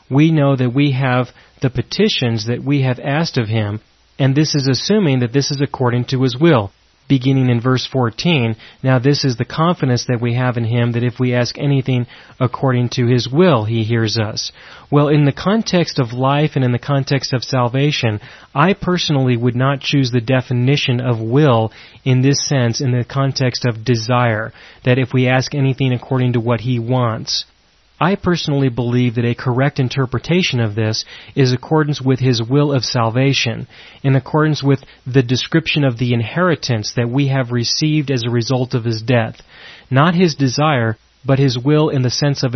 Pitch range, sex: 120-145 Hz, male